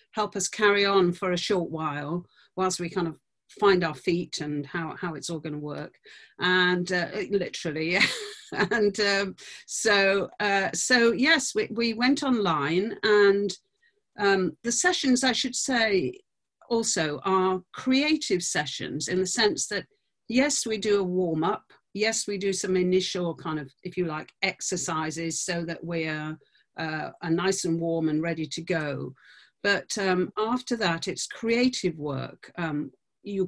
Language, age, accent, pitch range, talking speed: English, 50-69, British, 165-205 Hz, 165 wpm